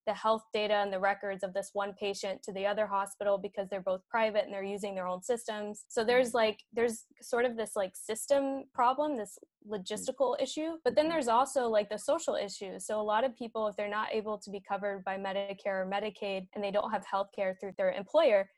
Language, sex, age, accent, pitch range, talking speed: English, female, 10-29, American, 195-235 Hz, 225 wpm